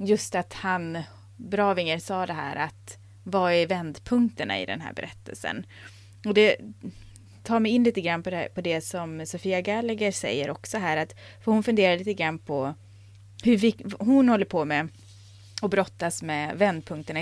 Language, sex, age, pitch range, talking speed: Swedish, female, 20-39, 150-210 Hz, 170 wpm